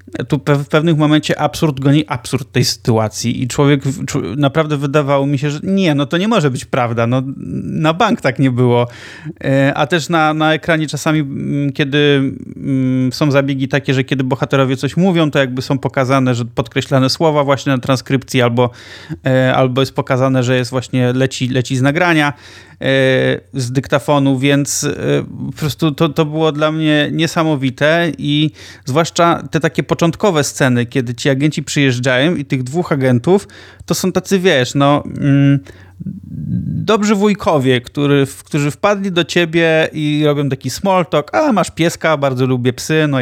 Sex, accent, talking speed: male, native, 155 wpm